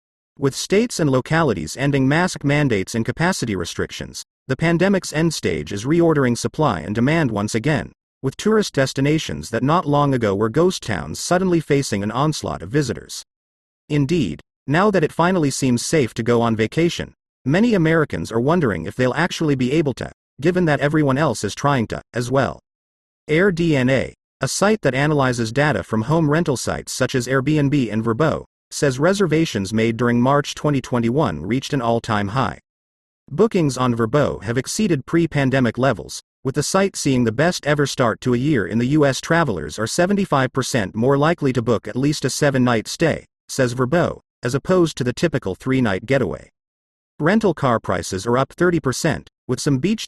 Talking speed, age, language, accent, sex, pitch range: 175 wpm, 40-59, English, American, male, 115-155 Hz